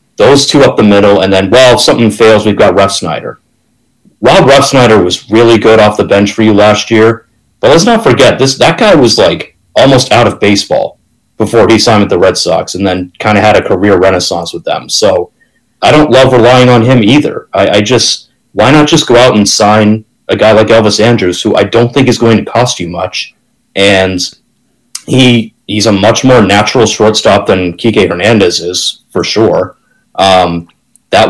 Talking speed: 205 wpm